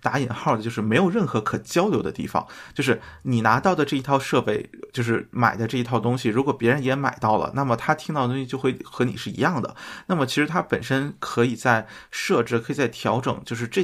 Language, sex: Chinese, male